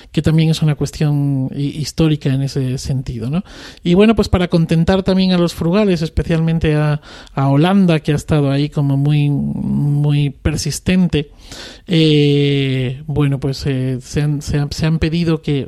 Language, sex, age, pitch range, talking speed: Spanish, male, 40-59, 140-170 Hz, 150 wpm